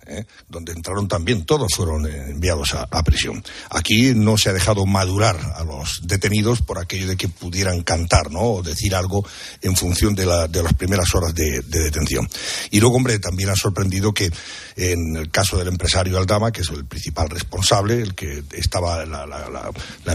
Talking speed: 185 wpm